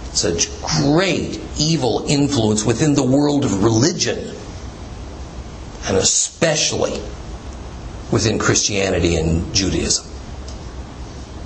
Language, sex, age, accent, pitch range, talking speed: English, male, 50-69, American, 90-145 Hz, 80 wpm